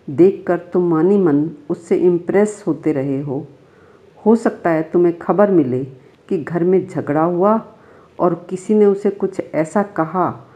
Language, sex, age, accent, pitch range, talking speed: Hindi, female, 50-69, native, 155-200 Hz, 155 wpm